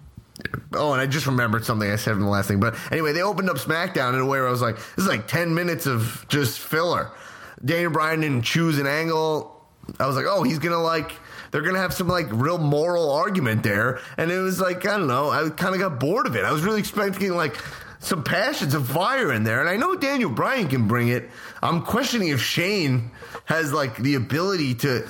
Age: 30-49